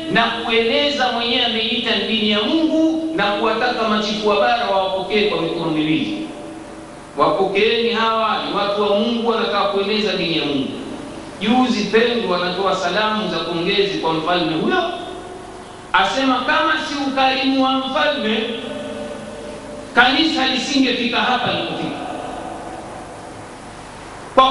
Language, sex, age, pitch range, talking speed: Swahili, male, 50-69, 205-275 Hz, 120 wpm